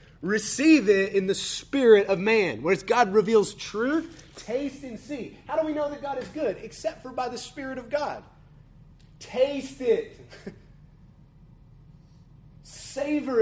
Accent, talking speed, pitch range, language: American, 145 wpm, 140-220 Hz, English